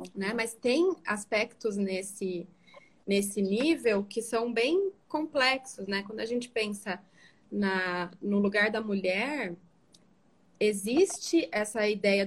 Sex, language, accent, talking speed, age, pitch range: female, Portuguese, Brazilian, 115 wpm, 20-39, 200-255 Hz